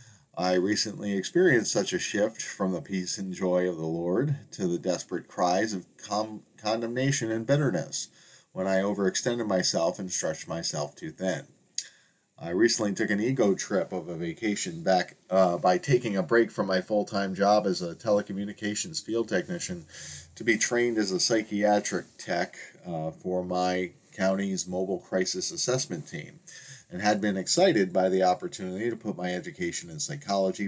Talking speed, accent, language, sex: 160 wpm, American, English, male